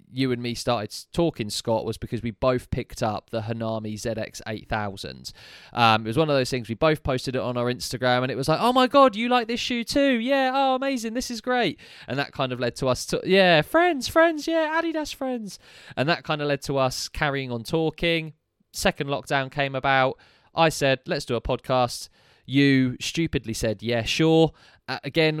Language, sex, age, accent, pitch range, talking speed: English, male, 20-39, British, 115-150 Hz, 205 wpm